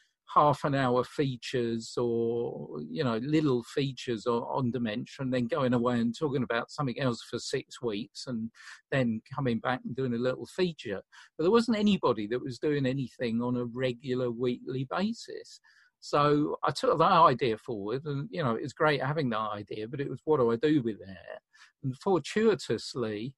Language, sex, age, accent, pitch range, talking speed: English, male, 50-69, British, 120-150 Hz, 180 wpm